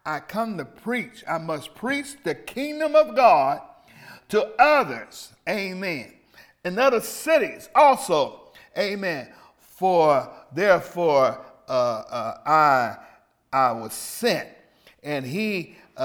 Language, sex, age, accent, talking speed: English, male, 50-69, American, 110 wpm